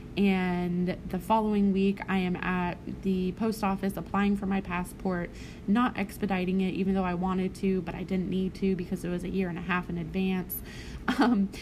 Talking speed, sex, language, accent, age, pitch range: 195 wpm, female, English, American, 20-39, 180-205 Hz